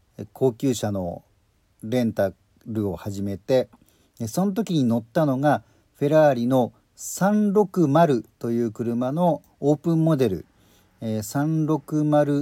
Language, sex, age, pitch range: Japanese, male, 50-69, 105-145 Hz